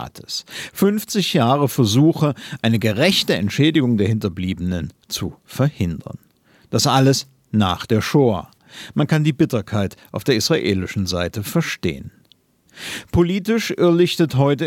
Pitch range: 115-160 Hz